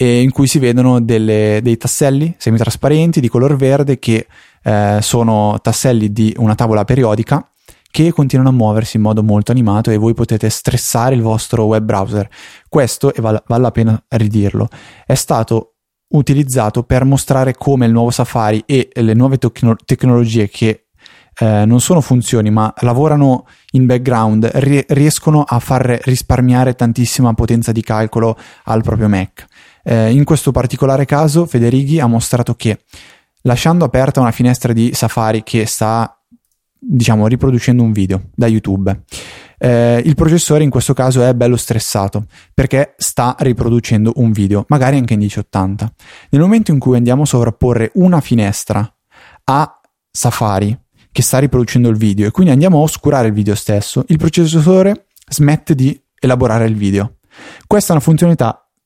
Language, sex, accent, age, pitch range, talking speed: Italian, male, native, 20-39, 110-135 Hz, 150 wpm